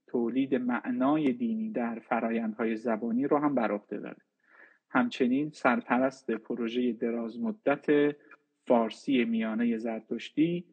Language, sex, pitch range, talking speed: Persian, male, 120-160 Hz, 100 wpm